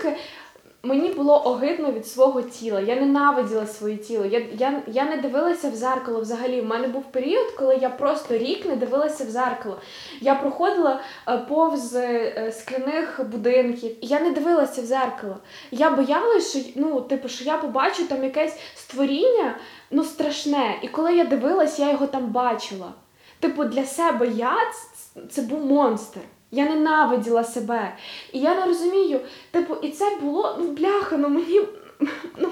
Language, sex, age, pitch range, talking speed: Ukrainian, female, 10-29, 255-345 Hz, 155 wpm